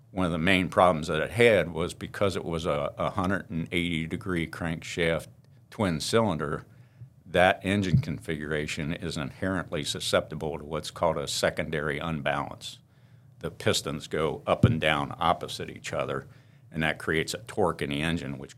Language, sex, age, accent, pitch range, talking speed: English, male, 60-79, American, 80-100 Hz, 150 wpm